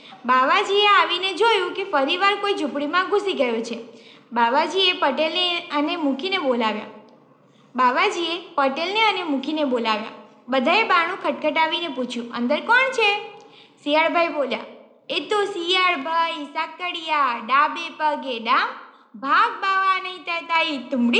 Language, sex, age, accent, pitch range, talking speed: Gujarati, female, 20-39, native, 275-405 Hz, 55 wpm